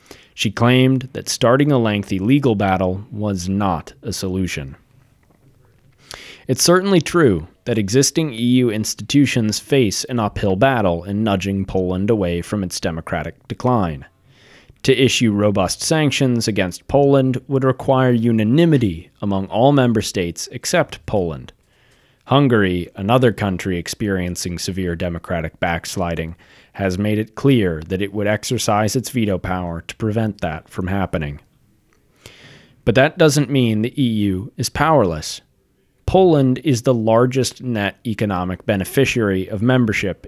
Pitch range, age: 95-130 Hz, 30-49